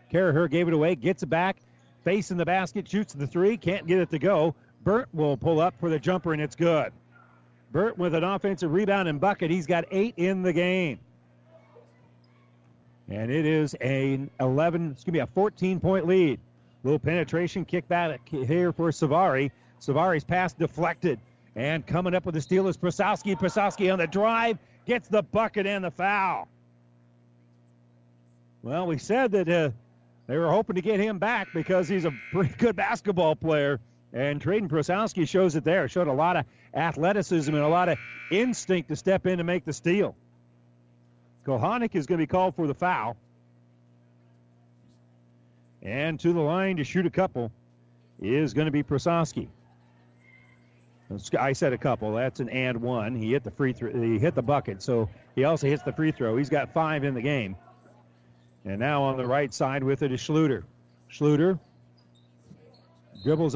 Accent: American